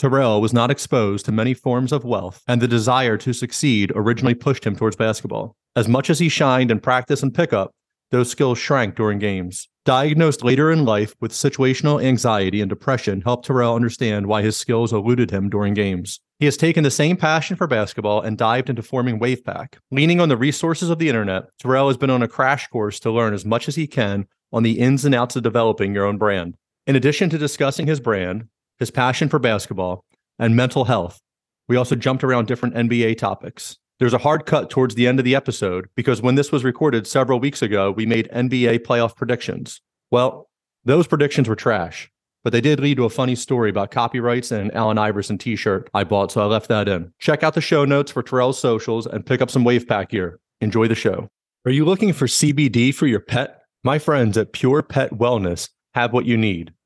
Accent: American